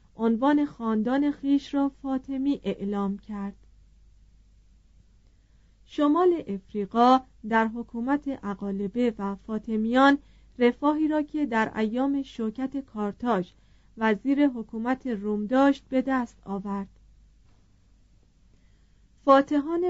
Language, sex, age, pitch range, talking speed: Persian, female, 40-59, 200-265 Hz, 85 wpm